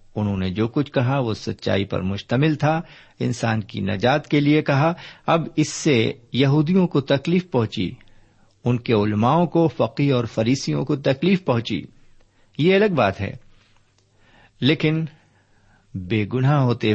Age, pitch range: 50-69, 100-135 Hz